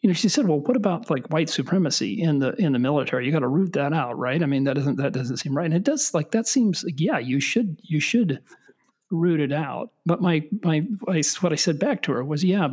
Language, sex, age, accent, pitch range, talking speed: English, male, 40-59, American, 140-180 Hz, 265 wpm